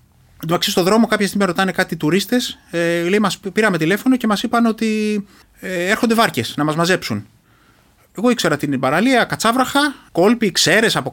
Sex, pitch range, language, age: male, 150-220 Hz, Greek, 20-39